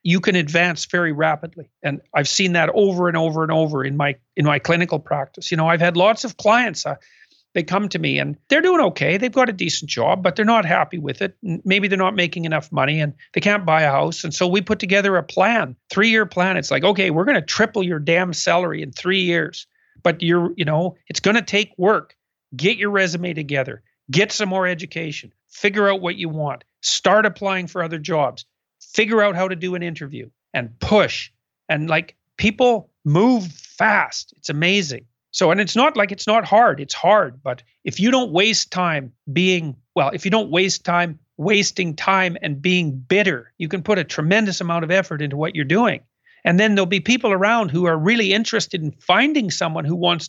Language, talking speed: English, 215 wpm